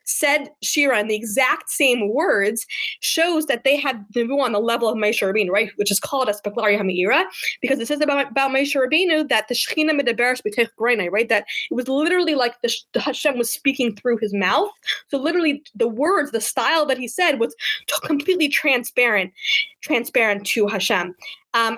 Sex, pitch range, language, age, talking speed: female, 210-275 Hz, English, 20-39, 185 wpm